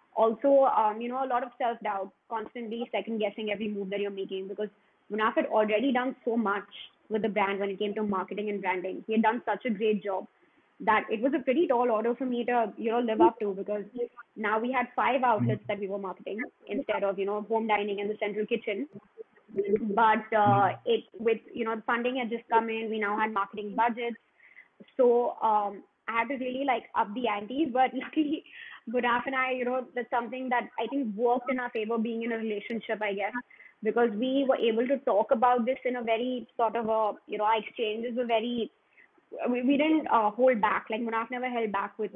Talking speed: 220 wpm